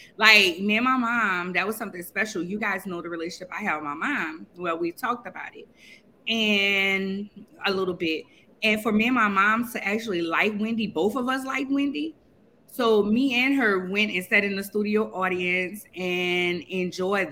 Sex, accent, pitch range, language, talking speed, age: female, American, 185-230 Hz, English, 195 wpm, 20-39